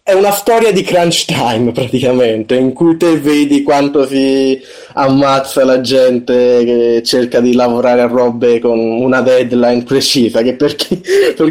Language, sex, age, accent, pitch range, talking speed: Italian, male, 20-39, native, 125-175 Hz, 155 wpm